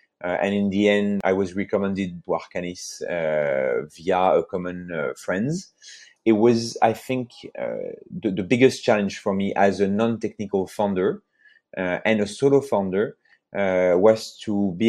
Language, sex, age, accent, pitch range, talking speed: English, male, 30-49, French, 95-110 Hz, 160 wpm